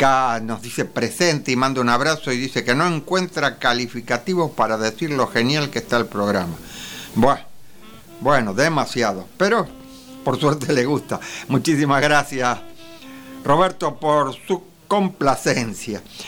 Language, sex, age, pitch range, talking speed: English, male, 60-79, 125-185 Hz, 130 wpm